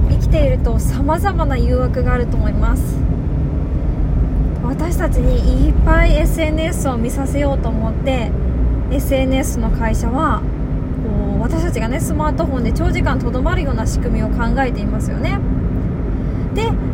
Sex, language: female, Japanese